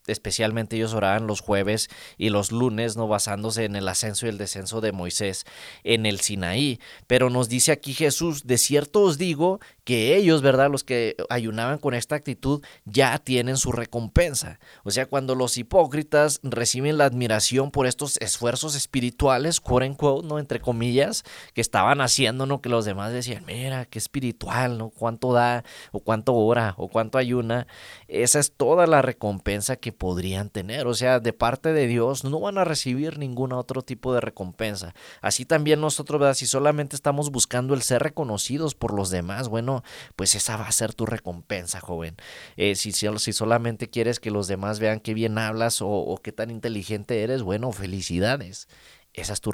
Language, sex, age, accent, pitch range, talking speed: English, male, 30-49, Mexican, 110-135 Hz, 180 wpm